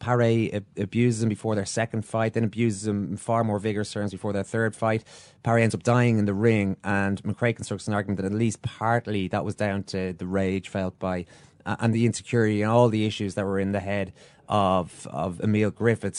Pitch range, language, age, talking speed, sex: 100-120 Hz, English, 30-49, 225 wpm, male